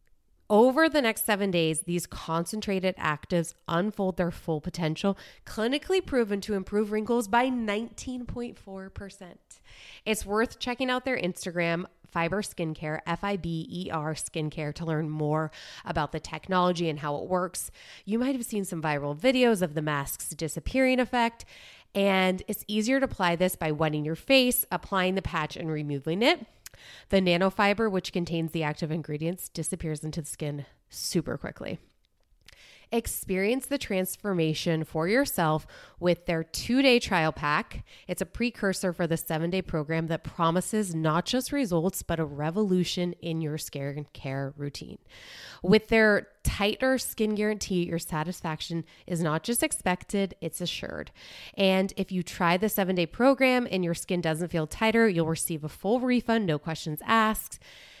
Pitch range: 160-215 Hz